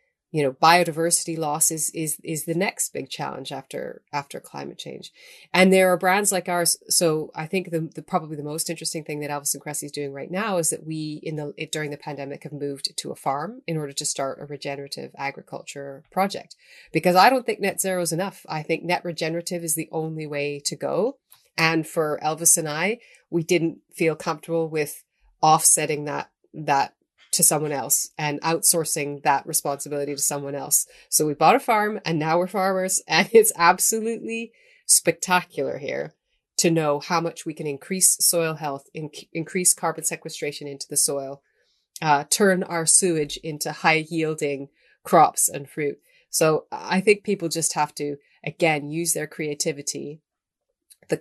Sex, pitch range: female, 150-175 Hz